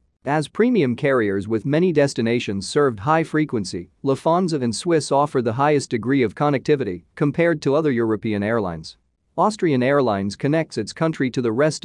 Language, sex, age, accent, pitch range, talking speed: English, male, 40-59, American, 110-150 Hz, 155 wpm